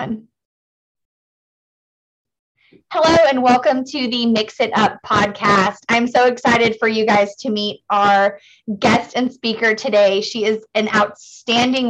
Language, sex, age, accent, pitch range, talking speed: English, female, 20-39, American, 200-245 Hz, 130 wpm